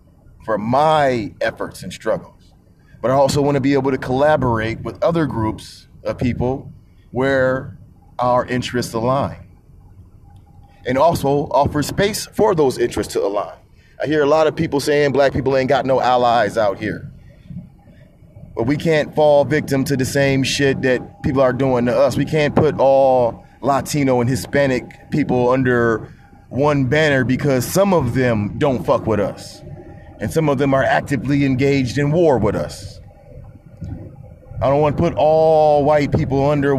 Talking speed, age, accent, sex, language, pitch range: 165 wpm, 30-49, American, male, English, 120-145 Hz